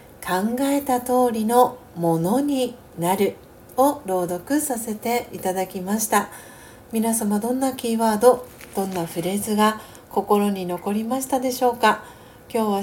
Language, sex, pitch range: Japanese, female, 190-245 Hz